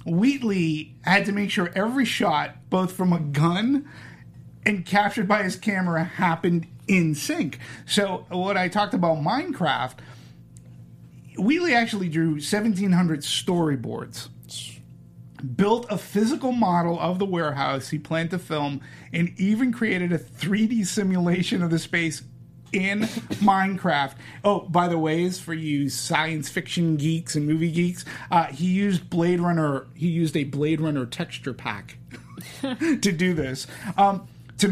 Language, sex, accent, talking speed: English, male, American, 140 wpm